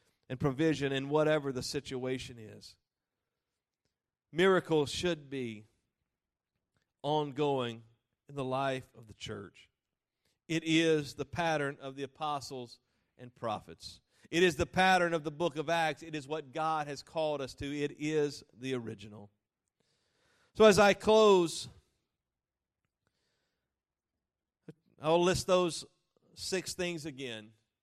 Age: 40-59